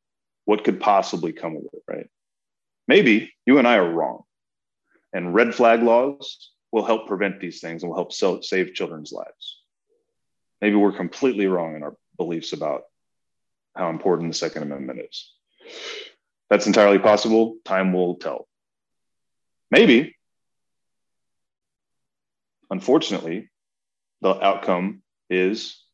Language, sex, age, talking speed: English, male, 30-49, 125 wpm